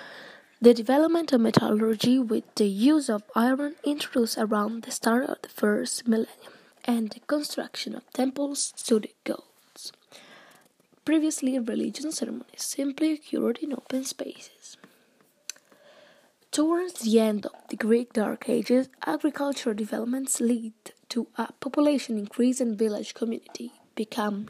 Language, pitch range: English, 225-270 Hz